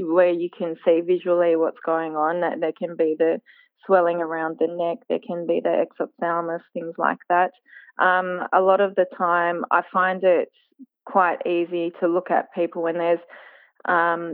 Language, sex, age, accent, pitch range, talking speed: English, female, 20-39, Australian, 170-185 Hz, 180 wpm